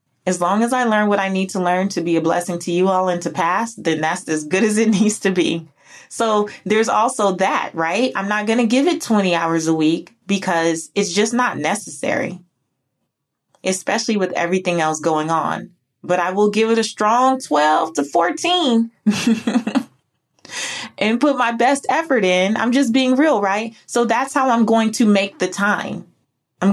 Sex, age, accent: female, 20-39, American